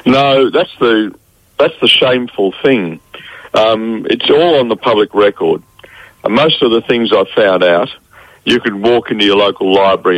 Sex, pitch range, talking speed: male, 95-115 Hz, 170 wpm